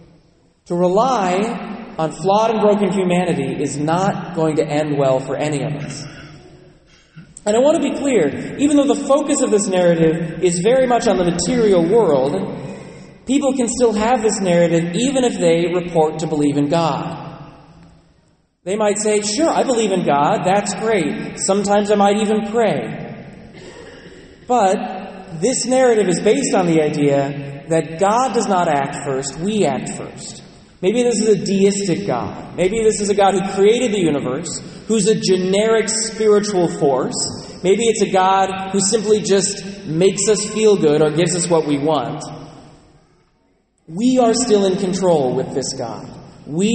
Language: English